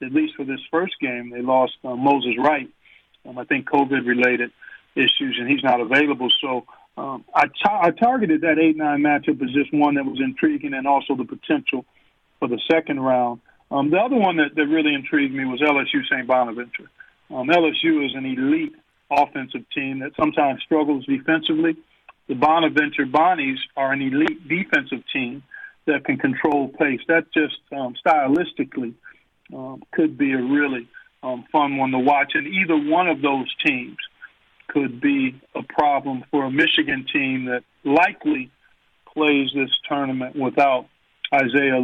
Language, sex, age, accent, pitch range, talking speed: English, male, 40-59, American, 130-160 Hz, 165 wpm